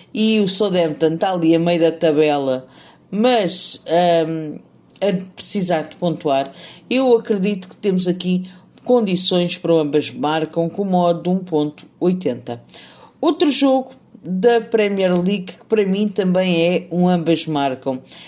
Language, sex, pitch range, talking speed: Portuguese, female, 170-215 Hz, 140 wpm